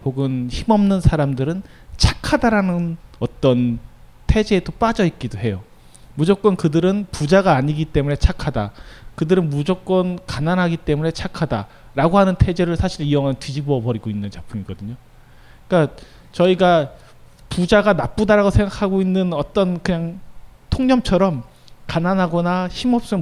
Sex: male